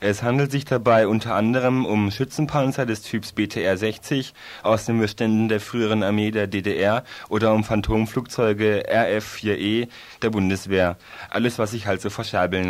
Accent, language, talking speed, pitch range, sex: German, German, 145 wpm, 105-125 Hz, male